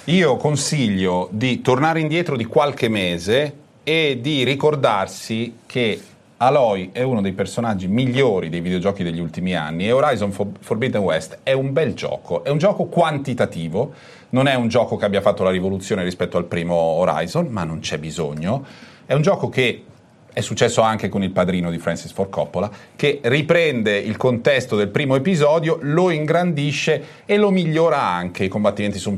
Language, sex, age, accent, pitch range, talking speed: Italian, male, 40-59, native, 95-135 Hz, 170 wpm